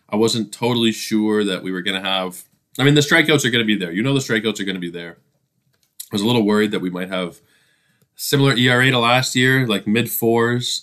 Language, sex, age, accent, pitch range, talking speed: English, male, 20-39, American, 95-120 Hz, 245 wpm